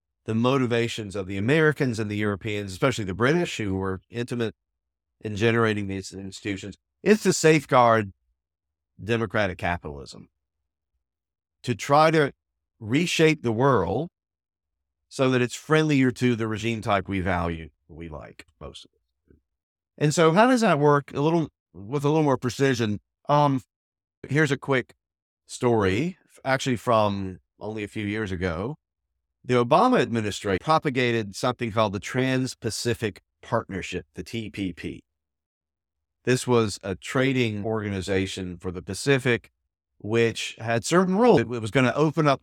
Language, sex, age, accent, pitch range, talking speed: English, male, 50-69, American, 90-125 Hz, 140 wpm